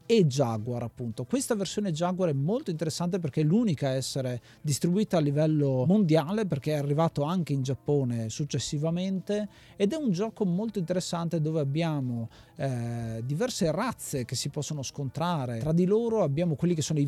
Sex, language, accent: male, Italian, native